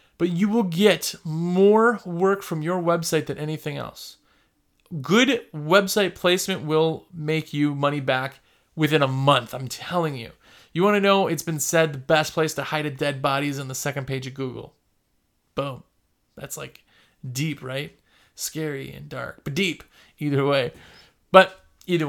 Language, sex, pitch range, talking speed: English, male, 145-185 Hz, 165 wpm